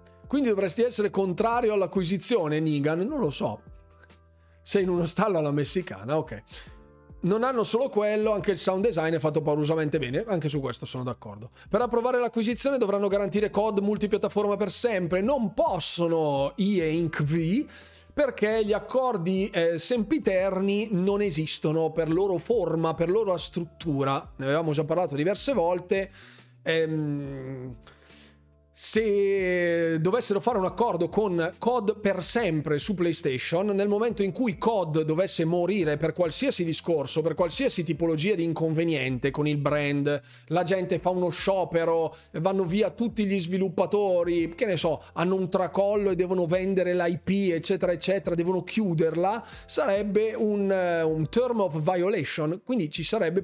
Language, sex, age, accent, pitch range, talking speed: Italian, male, 30-49, native, 160-205 Hz, 145 wpm